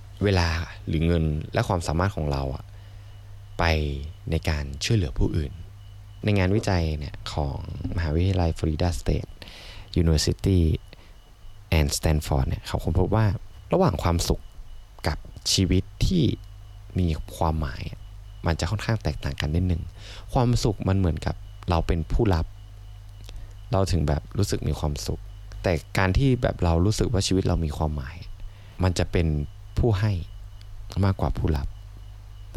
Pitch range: 85-105 Hz